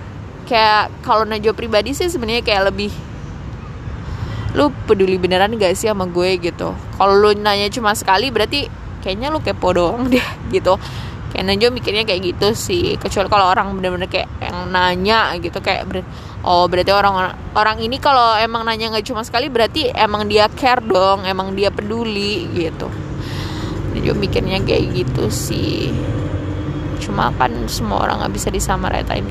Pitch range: 190-260 Hz